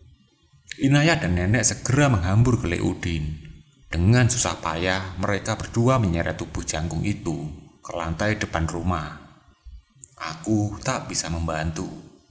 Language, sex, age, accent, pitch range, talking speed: Indonesian, male, 30-49, native, 85-120 Hz, 115 wpm